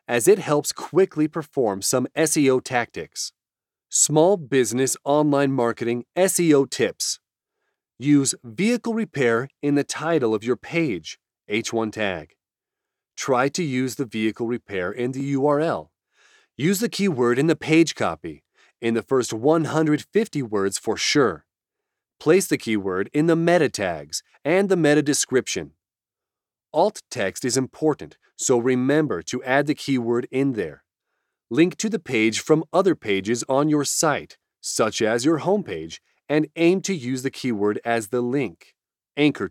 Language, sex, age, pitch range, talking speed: English, male, 30-49, 120-160 Hz, 145 wpm